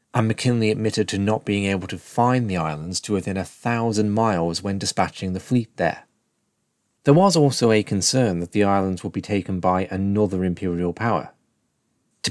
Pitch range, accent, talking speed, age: 90-115 Hz, British, 180 wpm, 30-49